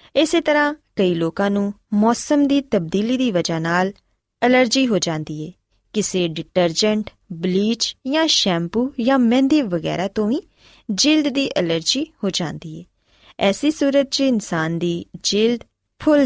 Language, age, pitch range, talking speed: Punjabi, 20-39, 175-255 Hz, 140 wpm